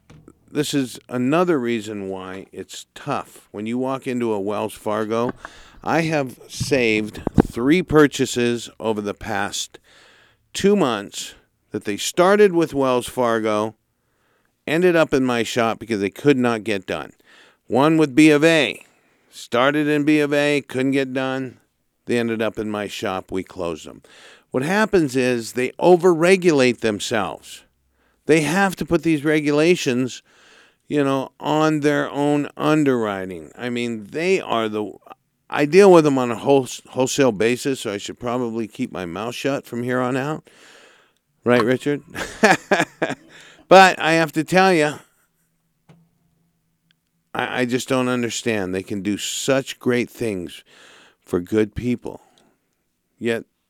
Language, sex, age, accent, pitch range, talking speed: English, male, 50-69, American, 105-150 Hz, 145 wpm